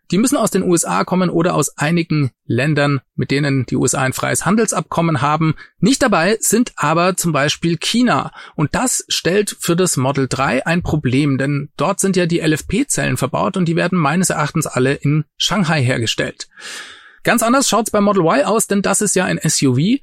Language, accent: German, German